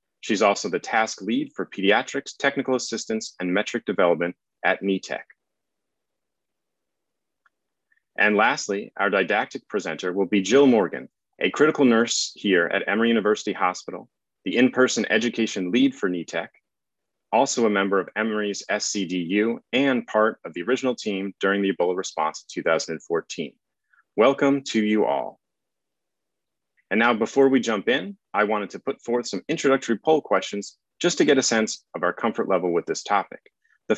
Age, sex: 30-49, male